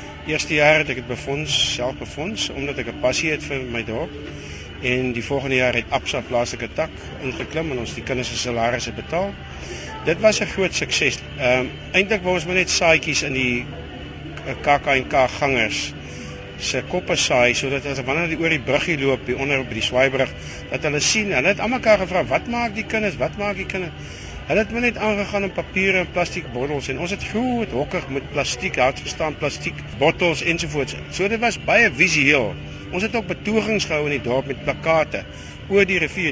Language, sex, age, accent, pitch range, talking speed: Dutch, male, 60-79, Dutch, 130-185 Hz, 210 wpm